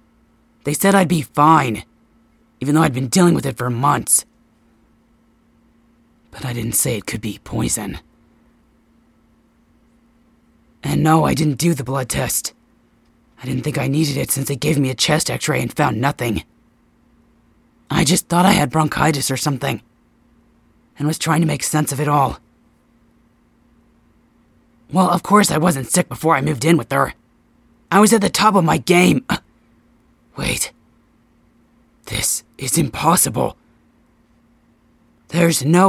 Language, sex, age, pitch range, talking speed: English, male, 30-49, 140-180 Hz, 150 wpm